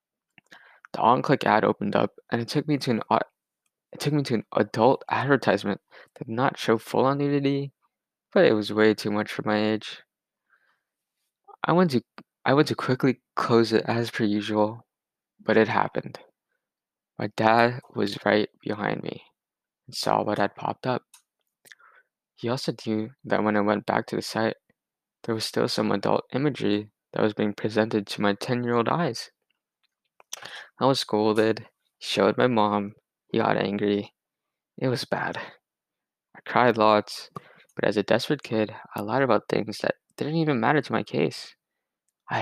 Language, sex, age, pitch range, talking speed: English, male, 20-39, 105-125 Hz, 165 wpm